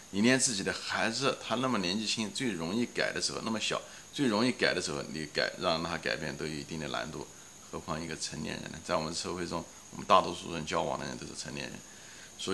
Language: Chinese